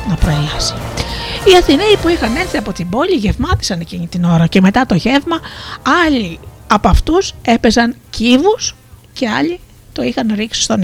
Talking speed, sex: 155 wpm, female